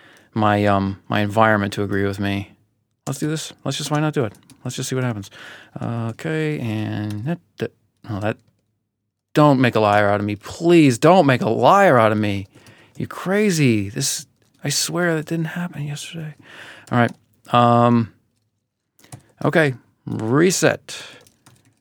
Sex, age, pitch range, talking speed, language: male, 40-59, 105-135 Hz, 155 wpm, English